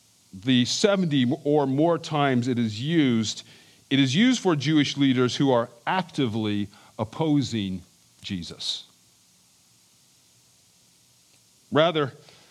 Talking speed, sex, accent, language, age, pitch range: 95 wpm, male, American, English, 40-59, 110-160 Hz